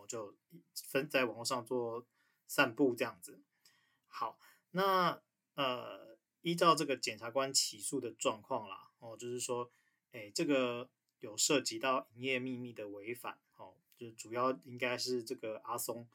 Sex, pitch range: male, 120-140 Hz